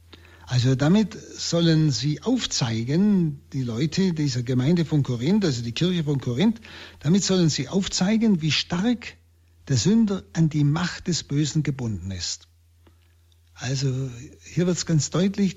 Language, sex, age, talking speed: German, male, 60-79, 145 wpm